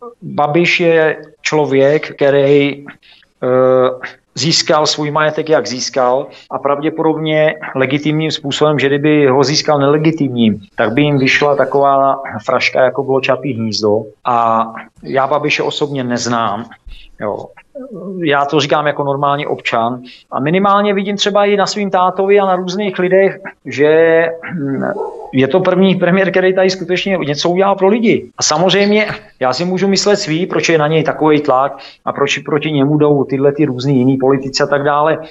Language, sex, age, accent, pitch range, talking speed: Czech, male, 40-59, native, 130-170 Hz, 155 wpm